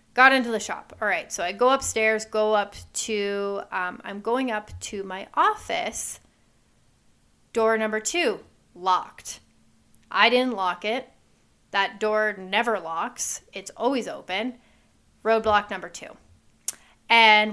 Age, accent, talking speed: 30-49, American, 135 wpm